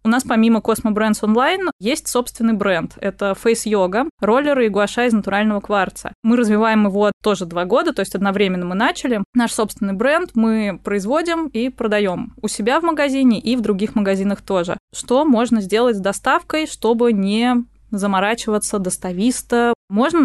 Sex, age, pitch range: female, 20-39, 200-235 Hz